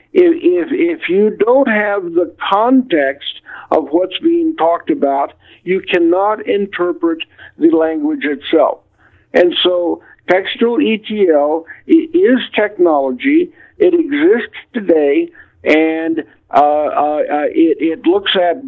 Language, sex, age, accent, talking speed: English, male, 60-79, American, 110 wpm